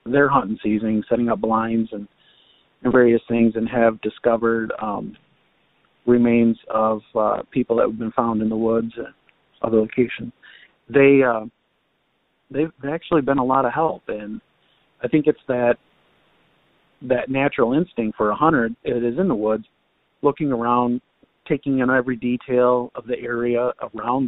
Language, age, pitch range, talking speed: English, 40-59, 115-125 Hz, 160 wpm